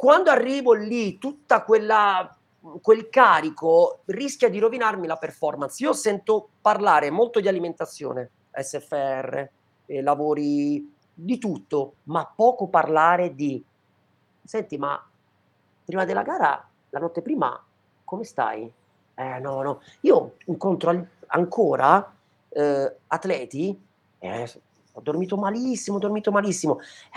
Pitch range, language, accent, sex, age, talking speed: 155-230 Hz, Italian, native, male, 40-59, 115 wpm